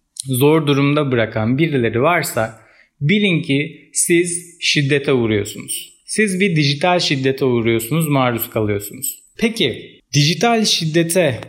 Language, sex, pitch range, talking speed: Turkish, male, 125-175 Hz, 105 wpm